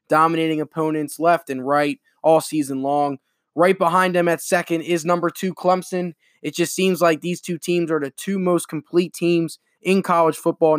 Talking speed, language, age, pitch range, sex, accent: 185 wpm, English, 20-39, 150-175 Hz, male, American